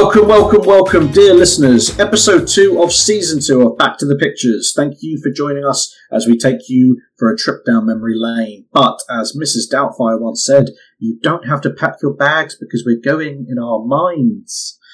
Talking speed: 195 wpm